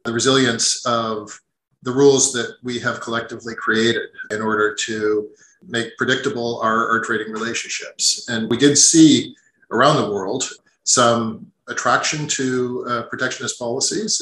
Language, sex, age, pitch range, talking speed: English, male, 50-69, 110-130 Hz, 135 wpm